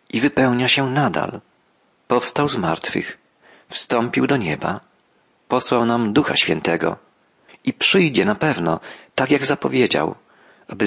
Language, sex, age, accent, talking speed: Polish, male, 40-59, native, 120 wpm